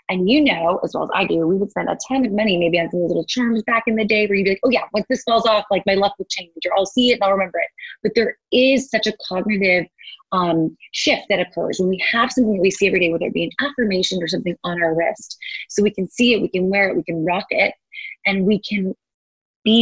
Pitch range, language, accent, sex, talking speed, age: 170-215 Hz, English, American, female, 280 wpm, 20-39